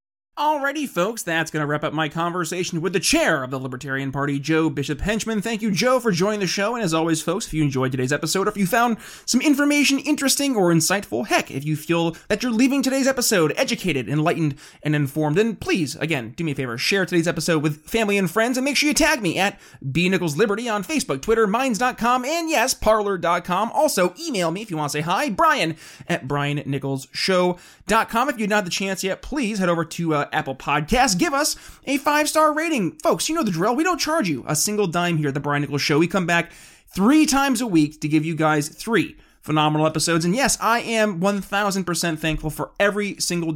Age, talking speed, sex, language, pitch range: 30-49, 220 wpm, male, English, 155-230 Hz